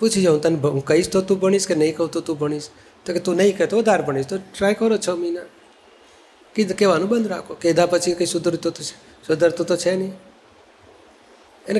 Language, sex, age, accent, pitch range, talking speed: Gujarati, male, 40-59, native, 160-195 Hz, 205 wpm